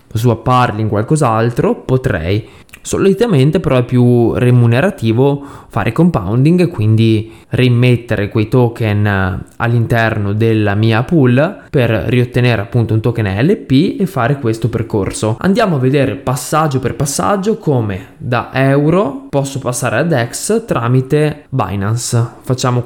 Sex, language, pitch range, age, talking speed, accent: male, Italian, 115-140 Hz, 20-39, 120 wpm, native